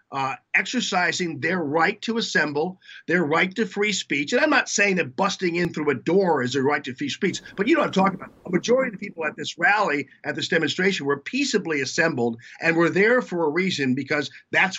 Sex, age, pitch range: male, 50-69, 150-195 Hz